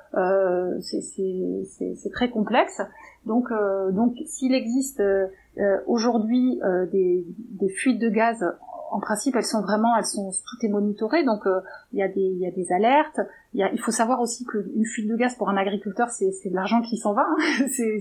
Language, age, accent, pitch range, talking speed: French, 30-49, French, 195-235 Hz, 195 wpm